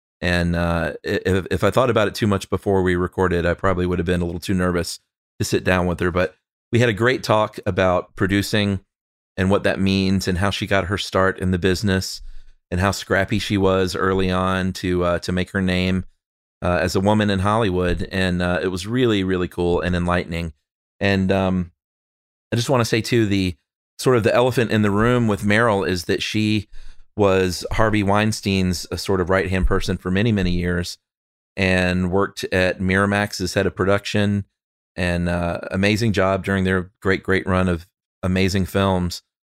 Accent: American